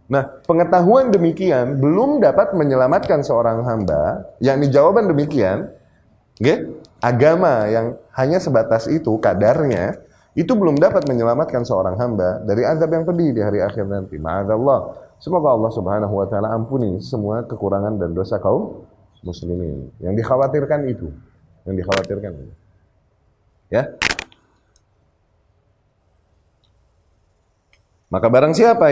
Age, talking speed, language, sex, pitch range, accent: 30-49, 110 wpm, Indonesian, male, 100-150 Hz, native